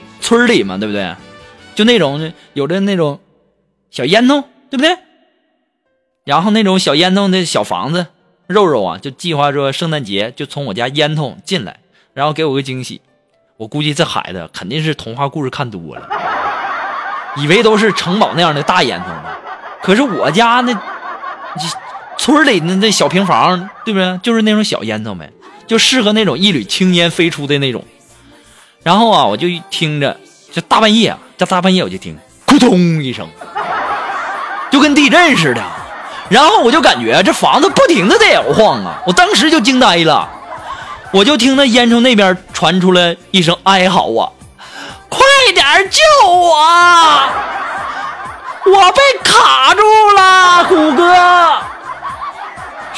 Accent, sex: native, male